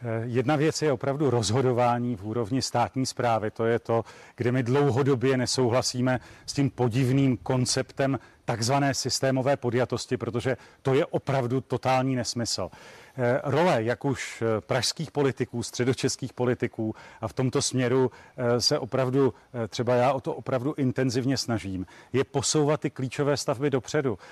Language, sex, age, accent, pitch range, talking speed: Czech, male, 40-59, native, 120-140 Hz, 135 wpm